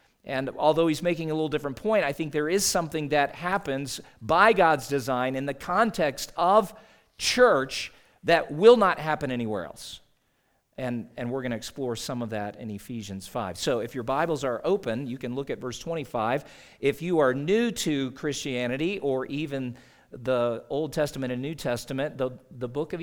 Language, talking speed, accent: English, 185 wpm, American